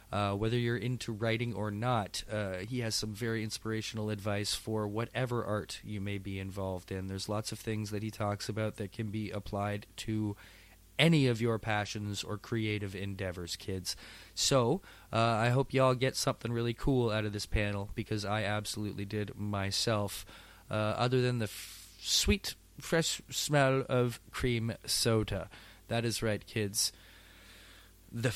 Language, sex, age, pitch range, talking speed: English, male, 20-39, 100-120 Hz, 165 wpm